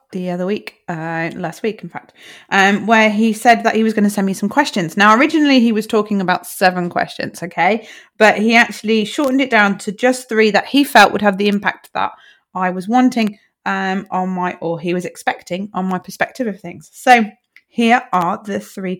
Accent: British